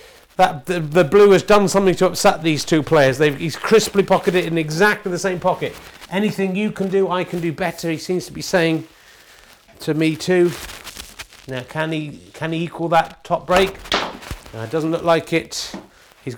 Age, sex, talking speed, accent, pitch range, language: 40-59, male, 200 wpm, British, 150-185 Hz, English